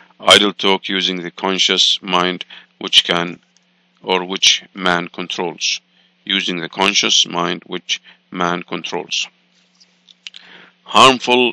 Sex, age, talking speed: male, 50-69, 105 wpm